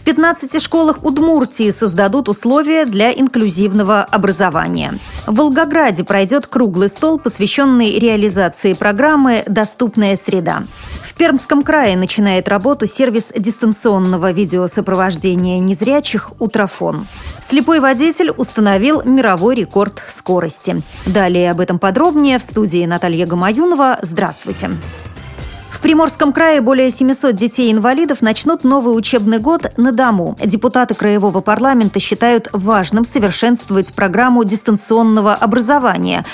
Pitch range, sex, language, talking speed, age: 200-265 Hz, female, Russian, 105 wpm, 30-49